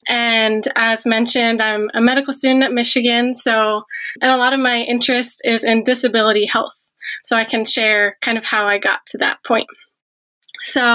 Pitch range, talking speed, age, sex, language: 225-255 Hz, 180 wpm, 20-39, female, English